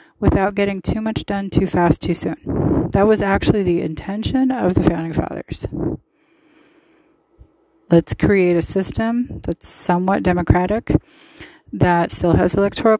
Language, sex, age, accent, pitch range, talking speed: English, female, 30-49, American, 175-220 Hz, 135 wpm